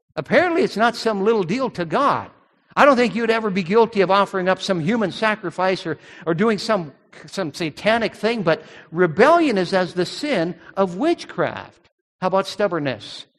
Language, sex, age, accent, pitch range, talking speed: English, male, 60-79, American, 155-210 Hz, 175 wpm